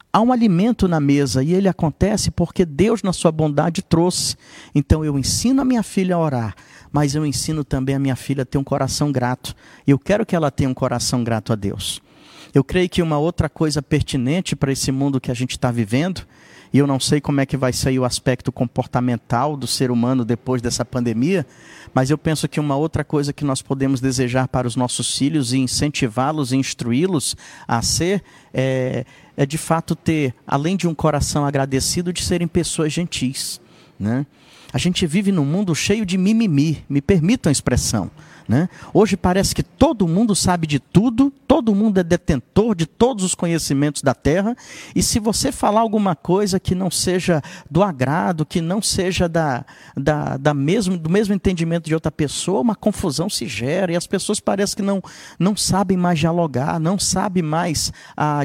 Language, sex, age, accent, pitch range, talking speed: Portuguese, male, 50-69, Brazilian, 135-185 Hz, 190 wpm